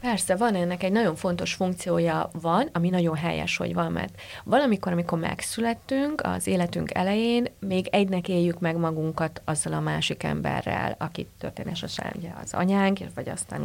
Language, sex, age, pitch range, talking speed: Hungarian, female, 30-49, 165-205 Hz, 160 wpm